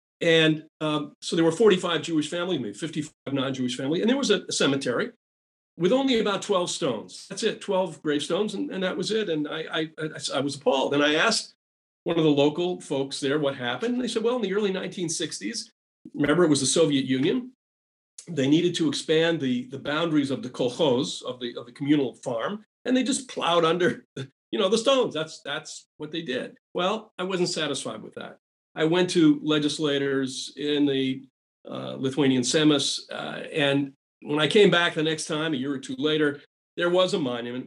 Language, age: English, 50-69